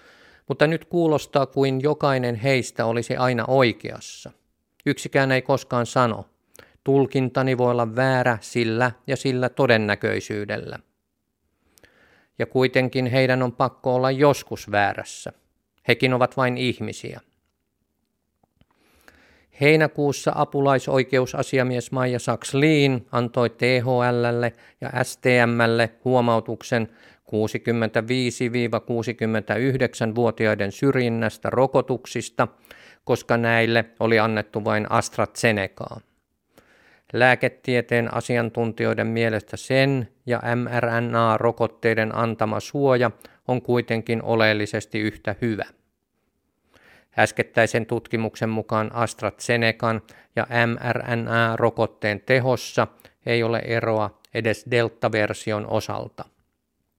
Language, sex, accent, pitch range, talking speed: Finnish, male, native, 110-130 Hz, 80 wpm